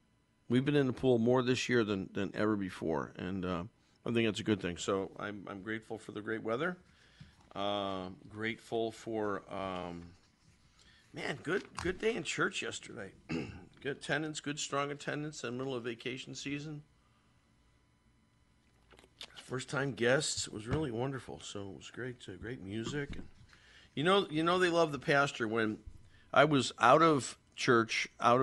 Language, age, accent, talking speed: English, 50-69, American, 170 wpm